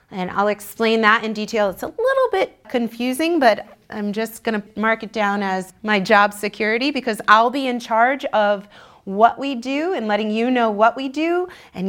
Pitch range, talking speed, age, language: 200-250 Hz, 195 wpm, 30-49, English